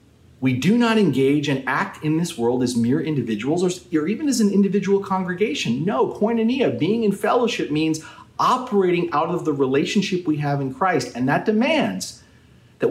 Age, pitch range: 40-59, 135-210 Hz